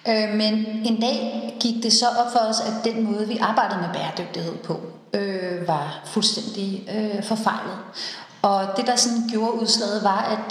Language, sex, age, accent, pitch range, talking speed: Danish, female, 30-49, native, 195-225 Hz, 170 wpm